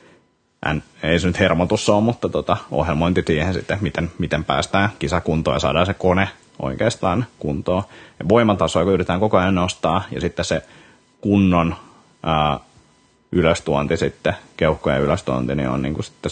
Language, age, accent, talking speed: Finnish, 30-49, native, 145 wpm